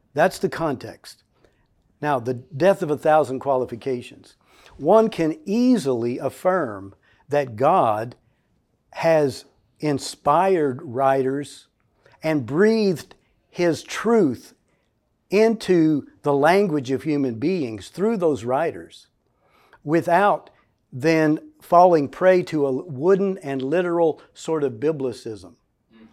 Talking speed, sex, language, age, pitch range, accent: 100 wpm, male, English, 60-79, 135-175 Hz, American